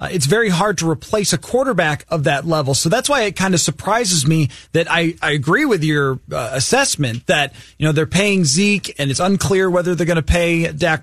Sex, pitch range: male, 160-200 Hz